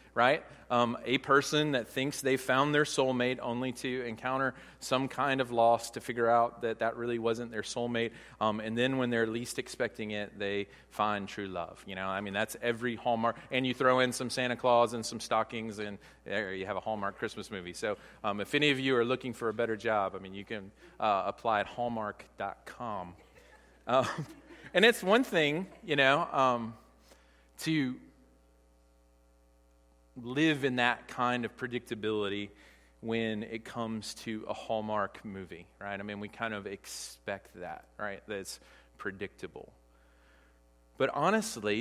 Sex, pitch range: male, 100-125 Hz